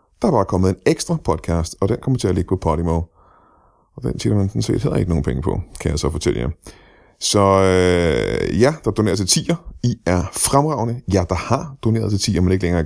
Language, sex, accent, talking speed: Danish, male, native, 245 wpm